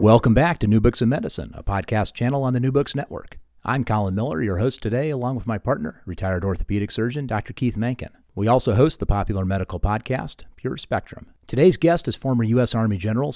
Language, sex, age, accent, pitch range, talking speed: English, male, 40-59, American, 100-120 Hz, 210 wpm